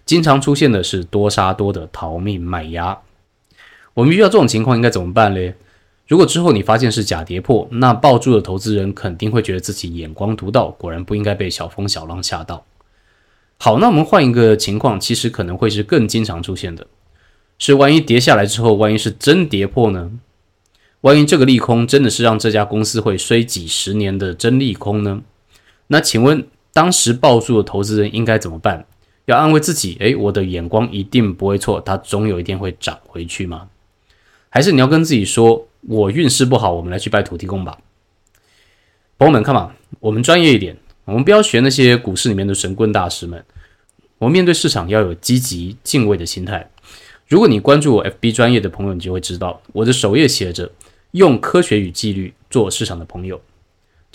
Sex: male